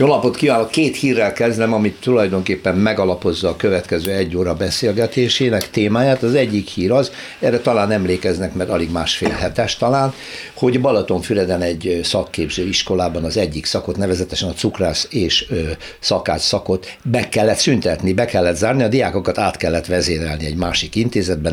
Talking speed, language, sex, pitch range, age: 150 wpm, Hungarian, male, 90-125 Hz, 60-79